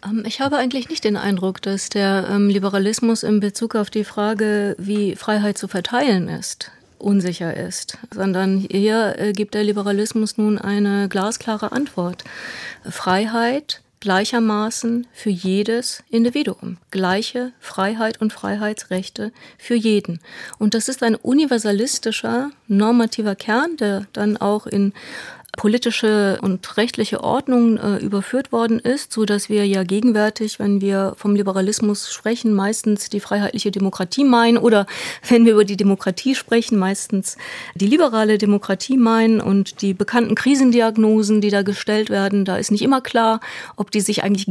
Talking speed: 140 wpm